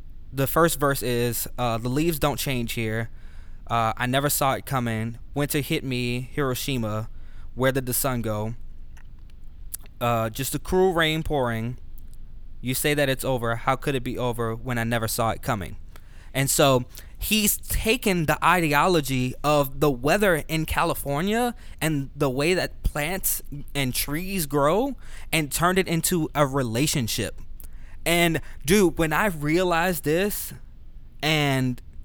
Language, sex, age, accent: English, male, 20-39, American